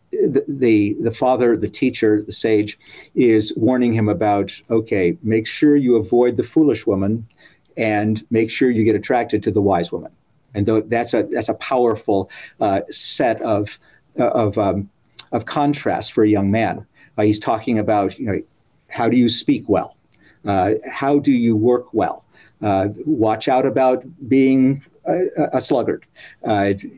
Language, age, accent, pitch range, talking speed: English, 50-69, American, 105-135 Hz, 165 wpm